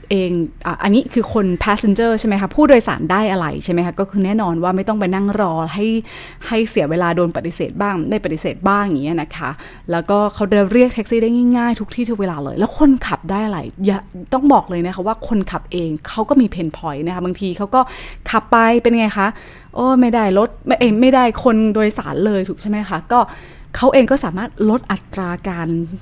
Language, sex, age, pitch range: English, female, 20-39, 175-225 Hz